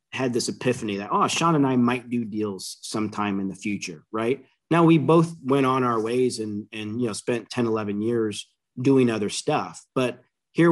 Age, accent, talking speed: 30-49, American, 200 wpm